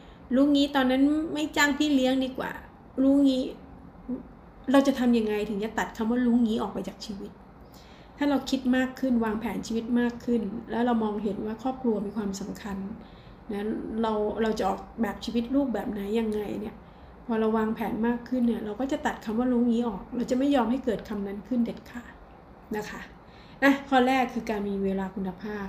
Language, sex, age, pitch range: Thai, female, 20-39, 205-245 Hz